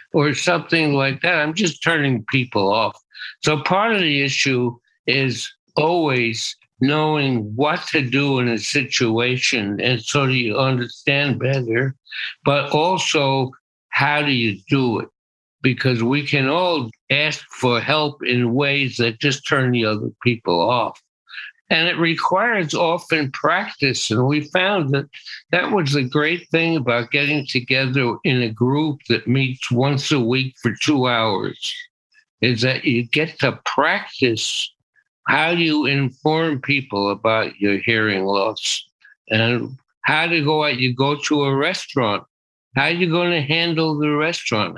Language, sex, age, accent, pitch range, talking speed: English, male, 60-79, American, 125-155 Hz, 150 wpm